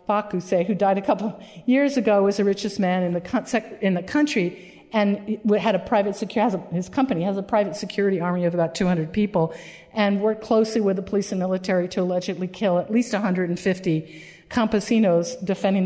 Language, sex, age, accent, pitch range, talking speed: English, female, 50-69, American, 180-220 Hz, 190 wpm